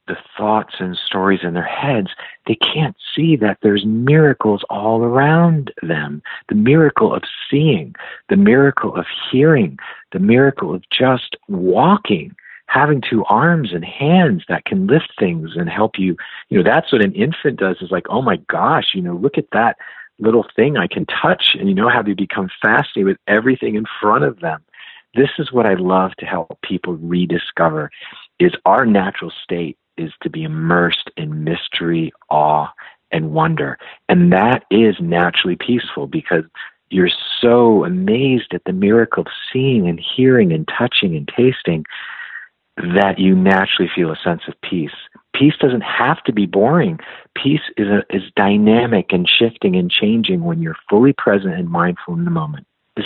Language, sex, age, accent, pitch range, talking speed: English, male, 50-69, American, 95-155 Hz, 170 wpm